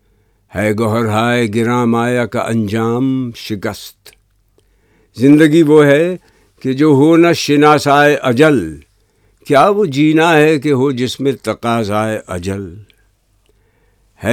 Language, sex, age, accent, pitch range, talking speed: English, male, 60-79, Indian, 110-145 Hz, 115 wpm